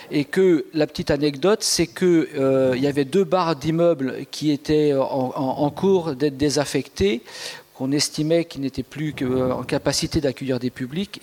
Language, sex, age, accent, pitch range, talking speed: French, male, 50-69, French, 135-170 Hz, 175 wpm